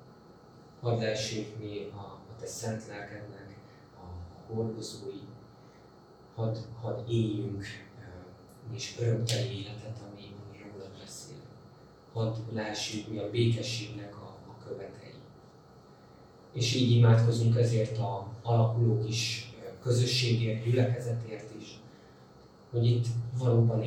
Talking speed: 105 wpm